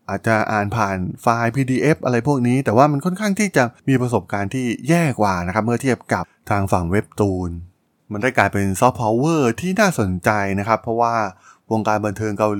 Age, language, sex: 20-39, Thai, male